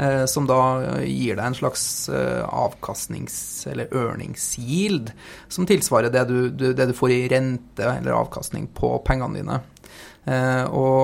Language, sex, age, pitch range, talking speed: English, male, 30-49, 125-160 Hz, 130 wpm